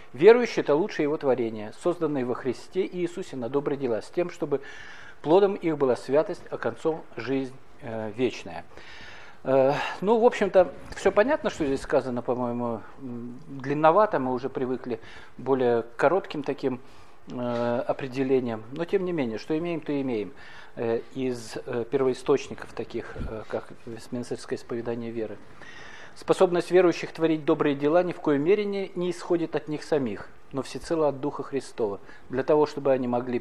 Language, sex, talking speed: Russian, male, 160 wpm